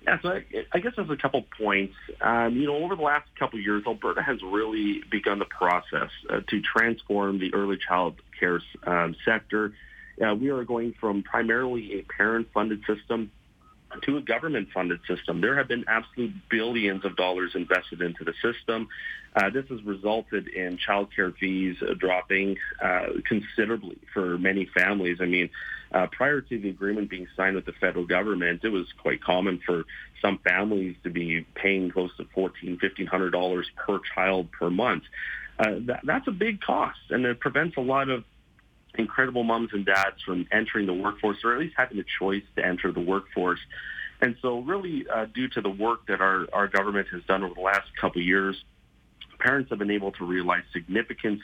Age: 40-59